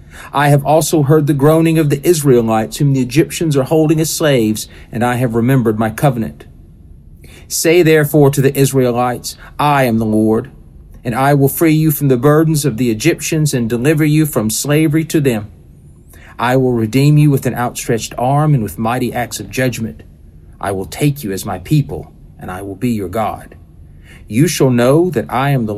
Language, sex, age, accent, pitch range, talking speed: English, male, 50-69, American, 100-140 Hz, 195 wpm